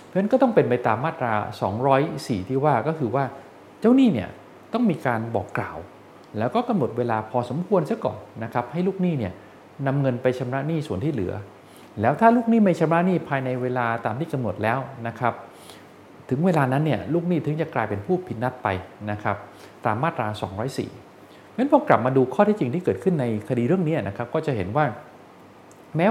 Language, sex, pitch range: Thai, male, 110-155 Hz